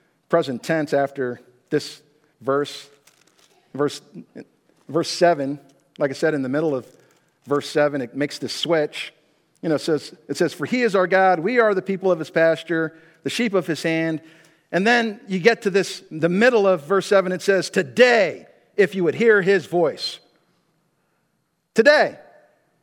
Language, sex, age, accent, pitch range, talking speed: English, male, 50-69, American, 160-230 Hz, 170 wpm